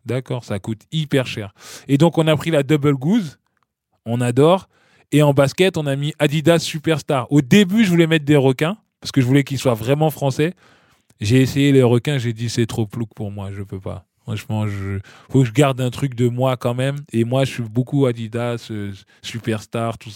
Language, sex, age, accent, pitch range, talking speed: French, male, 20-39, French, 120-155 Hz, 215 wpm